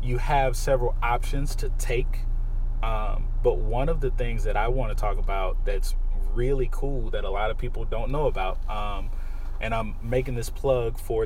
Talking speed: 185 wpm